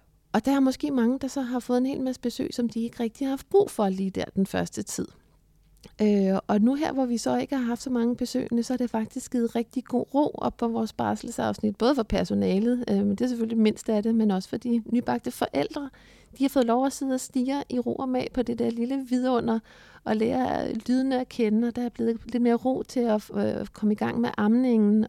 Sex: female